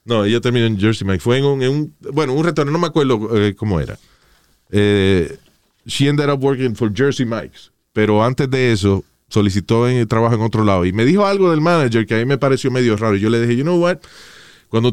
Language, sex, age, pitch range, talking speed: Spanish, male, 30-49, 100-140 Hz, 240 wpm